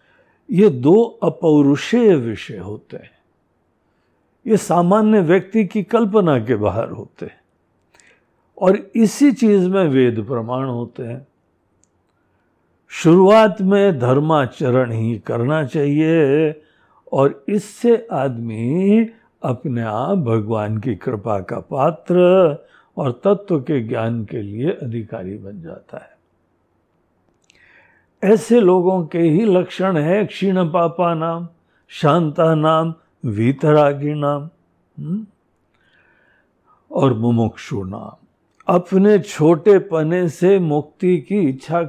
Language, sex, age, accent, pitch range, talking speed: Hindi, male, 60-79, native, 125-190 Hz, 105 wpm